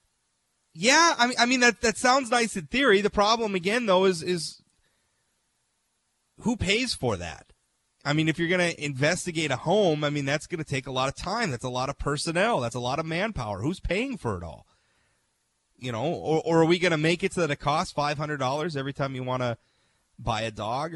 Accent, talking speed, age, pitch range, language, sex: American, 220 wpm, 30-49, 135-185 Hz, English, male